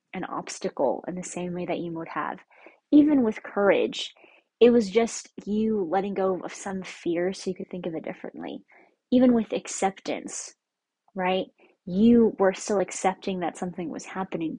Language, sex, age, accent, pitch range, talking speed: English, female, 20-39, American, 180-210 Hz, 170 wpm